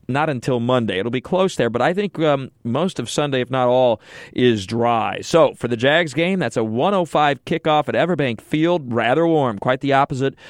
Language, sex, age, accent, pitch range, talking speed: English, male, 40-59, American, 120-145 Hz, 205 wpm